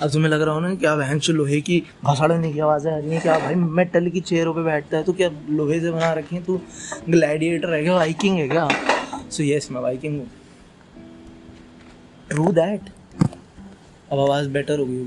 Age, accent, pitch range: 20-39, native, 135-170 Hz